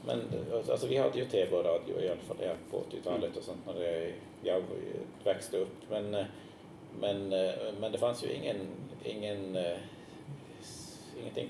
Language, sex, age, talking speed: Swedish, male, 30-49, 135 wpm